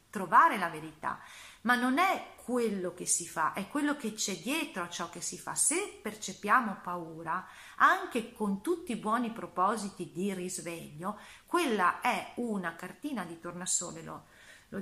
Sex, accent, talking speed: female, native, 155 wpm